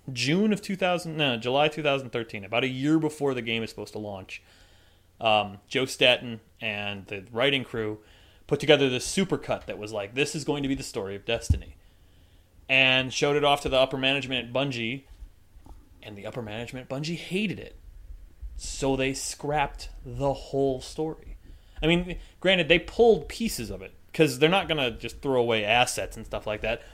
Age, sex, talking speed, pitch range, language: 30-49, male, 190 wpm, 105-160 Hz, English